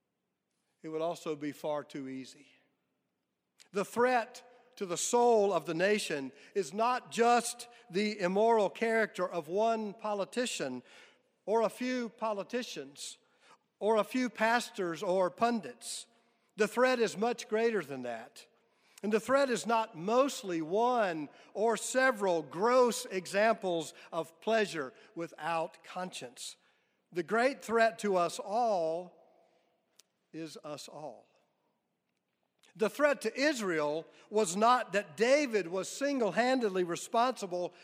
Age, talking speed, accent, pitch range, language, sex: 50-69, 120 wpm, American, 180-235 Hz, English, male